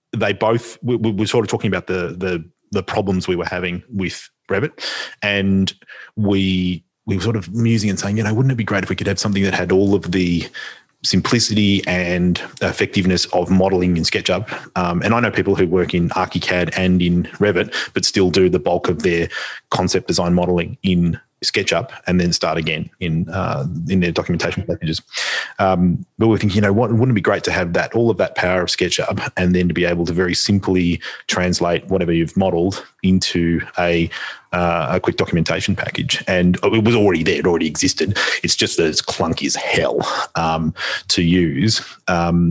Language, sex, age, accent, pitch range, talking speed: English, male, 30-49, Australian, 90-100 Hz, 200 wpm